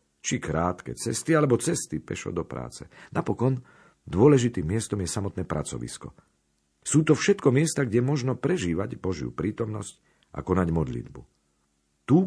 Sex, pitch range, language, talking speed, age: male, 70-105 Hz, Slovak, 130 wpm, 50-69